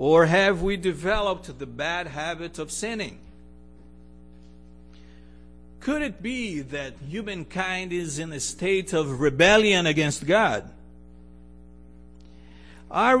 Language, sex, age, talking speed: English, male, 50-69, 105 wpm